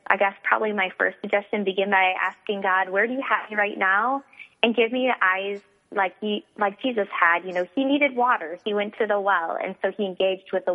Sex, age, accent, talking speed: female, 20-39, American, 240 wpm